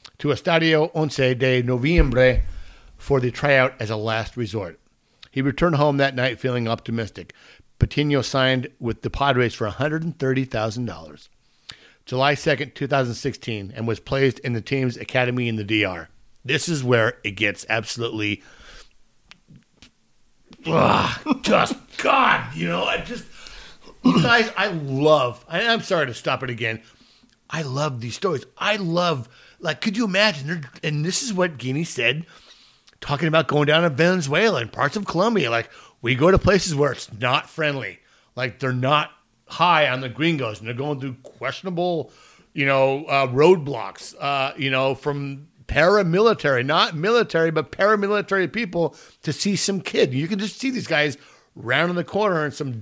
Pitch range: 120-165 Hz